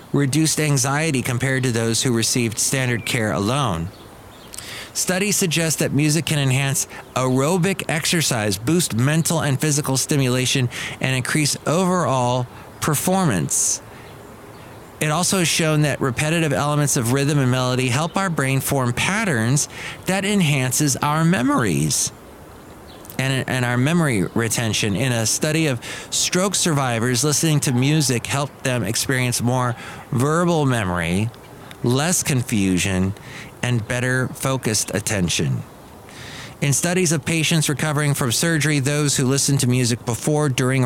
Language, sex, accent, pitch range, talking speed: English, male, American, 120-155 Hz, 130 wpm